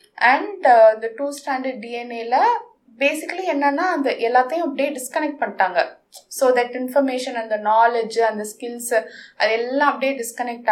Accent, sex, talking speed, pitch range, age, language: native, female, 130 wpm, 225-285 Hz, 20-39, Tamil